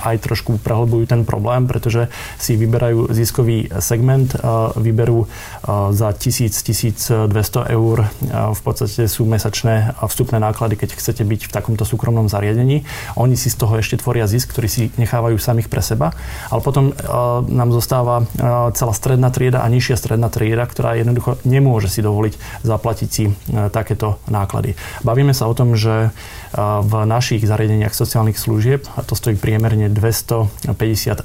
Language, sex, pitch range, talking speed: Slovak, male, 105-120 Hz, 145 wpm